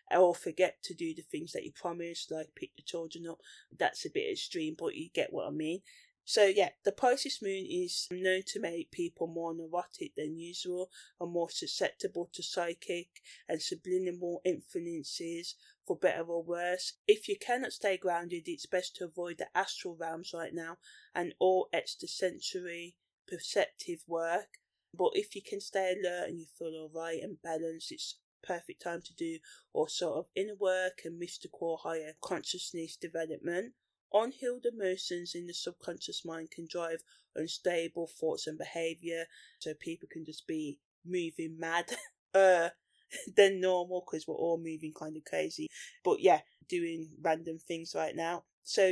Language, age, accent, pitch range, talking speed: English, 20-39, British, 165-200 Hz, 165 wpm